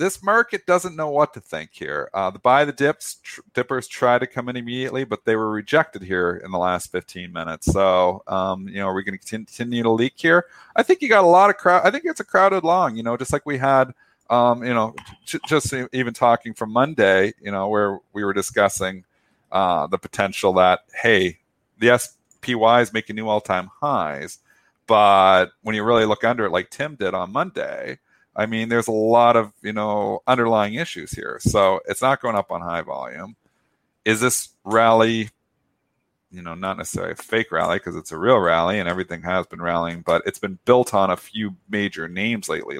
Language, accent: English, American